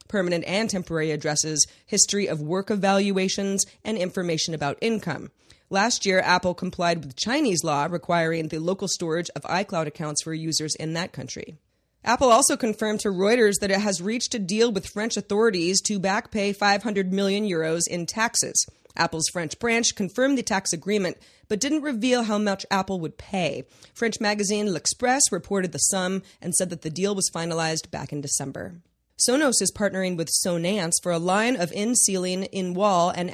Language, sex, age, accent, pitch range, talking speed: English, female, 30-49, American, 165-210 Hz, 170 wpm